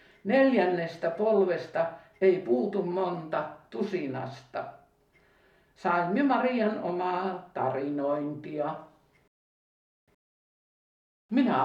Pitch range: 170-205 Hz